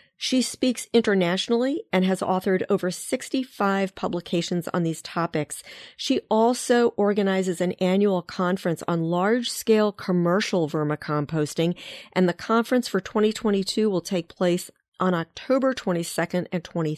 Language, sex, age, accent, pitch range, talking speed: English, female, 40-59, American, 165-205 Hz, 120 wpm